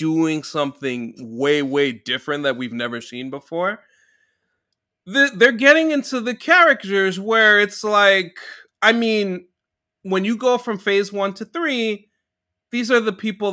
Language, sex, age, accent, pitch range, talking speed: English, male, 30-49, American, 125-200 Hz, 140 wpm